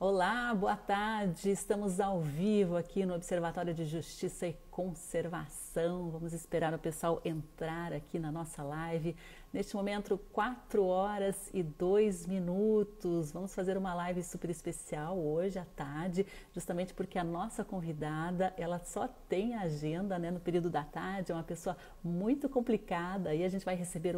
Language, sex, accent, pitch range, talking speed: Portuguese, female, Brazilian, 160-190 Hz, 155 wpm